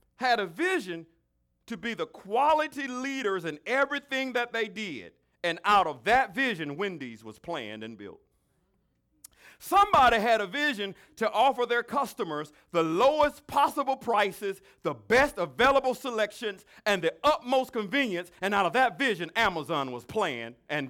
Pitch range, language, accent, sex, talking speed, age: 175-270 Hz, English, American, male, 150 wpm, 50-69